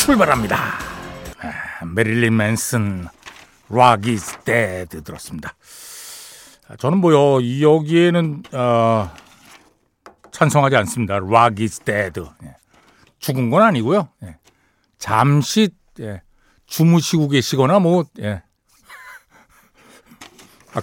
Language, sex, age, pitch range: Korean, male, 60-79, 110-170 Hz